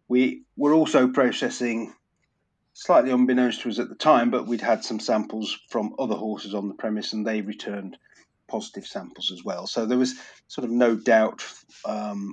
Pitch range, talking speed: 105-120 Hz, 180 wpm